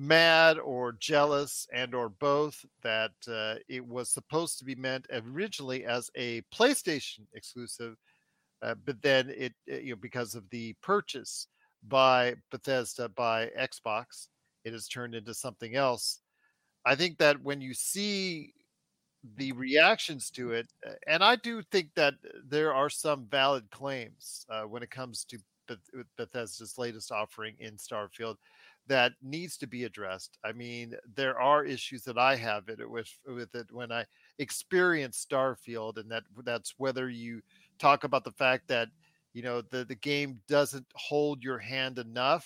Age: 40-59